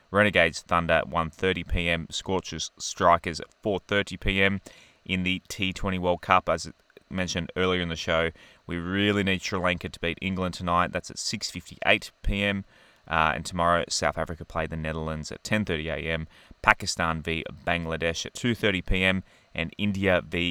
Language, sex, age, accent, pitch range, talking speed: English, male, 20-39, Australian, 85-95 Hz, 140 wpm